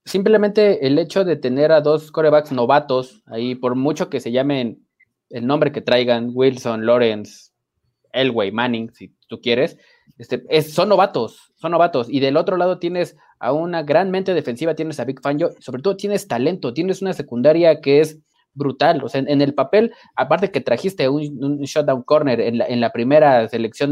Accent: Mexican